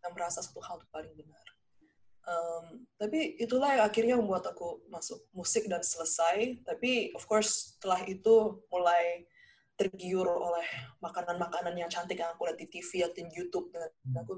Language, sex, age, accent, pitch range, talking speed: Indonesian, female, 20-39, native, 175-215 Hz, 160 wpm